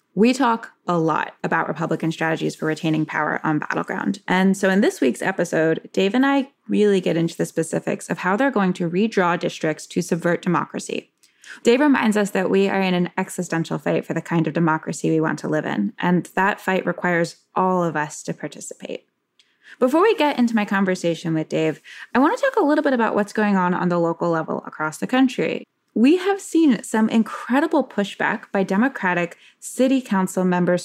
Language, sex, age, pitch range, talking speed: English, female, 10-29, 165-210 Hz, 200 wpm